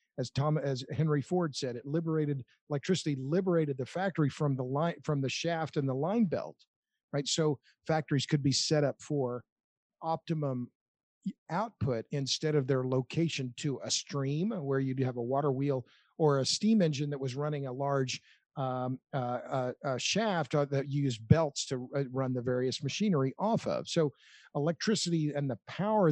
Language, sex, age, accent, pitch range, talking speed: English, male, 50-69, American, 135-165 Hz, 170 wpm